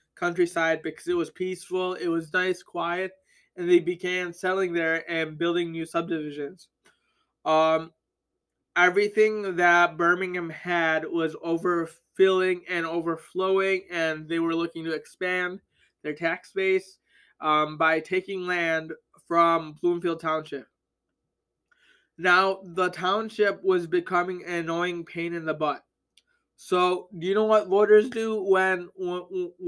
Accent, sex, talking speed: American, male, 125 wpm